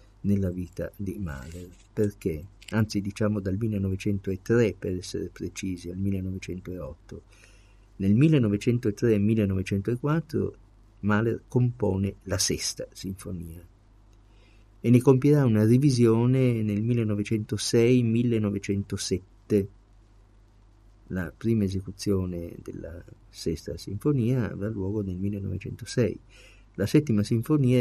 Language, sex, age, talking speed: Italian, male, 50-69, 90 wpm